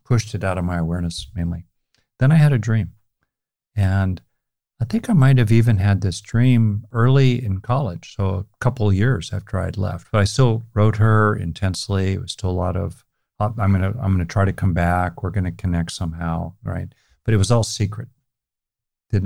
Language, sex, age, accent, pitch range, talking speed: English, male, 50-69, American, 95-120 Hz, 195 wpm